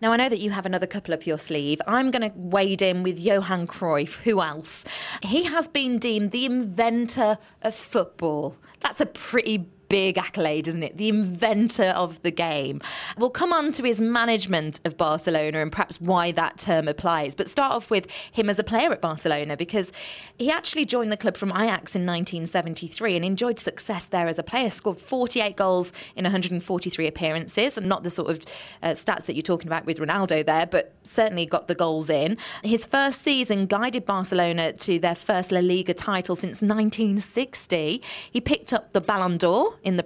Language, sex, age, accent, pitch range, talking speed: English, female, 20-39, British, 170-220 Hz, 195 wpm